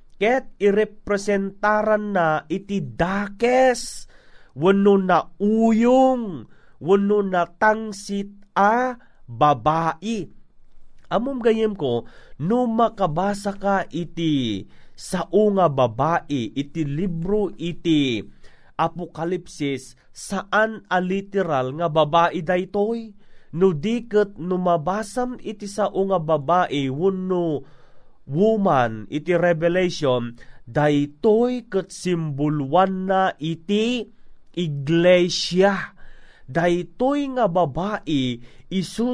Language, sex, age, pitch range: Filipino, male, 30-49, 165-210 Hz